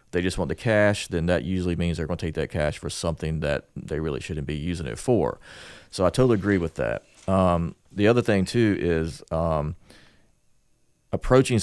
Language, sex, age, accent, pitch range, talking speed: English, male, 40-59, American, 85-110 Hz, 200 wpm